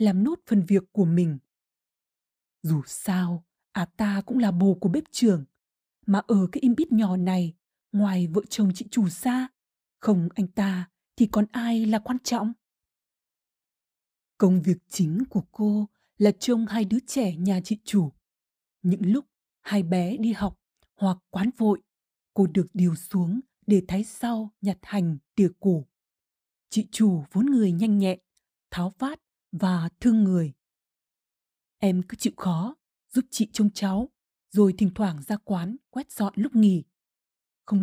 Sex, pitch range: female, 180-225 Hz